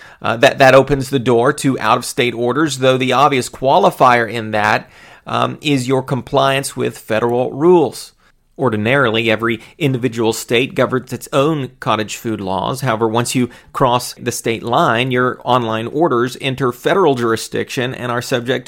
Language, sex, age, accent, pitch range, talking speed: English, male, 40-59, American, 120-140 Hz, 155 wpm